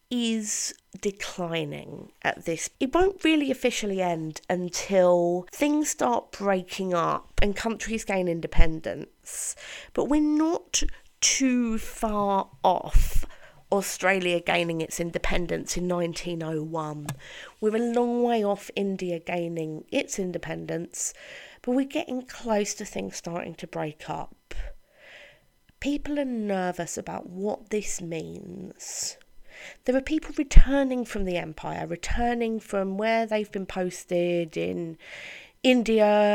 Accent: British